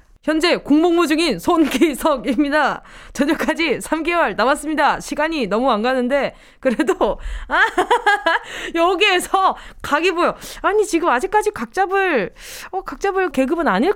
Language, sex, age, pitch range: Korean, female, 20-39, 215-345 Hz